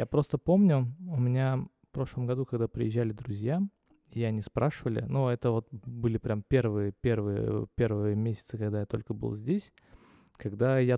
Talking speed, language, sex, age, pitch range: 170 wpm, Russian, male, 20-39, 110-130 Hz